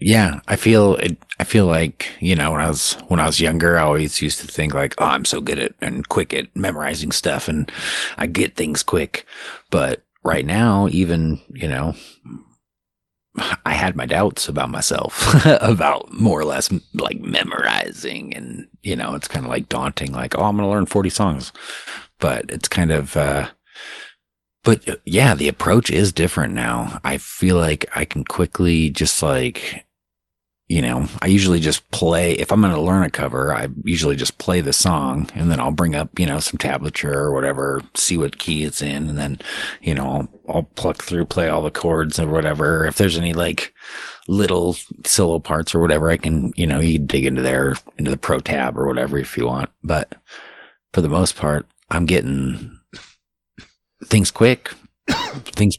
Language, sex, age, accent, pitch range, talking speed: English, male, 40-59, American, 70-90 Hz, 190 wpm